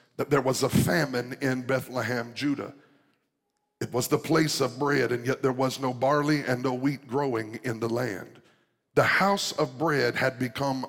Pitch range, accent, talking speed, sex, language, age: 130-155 Hz, American, 175 wpm, male, English, 50-69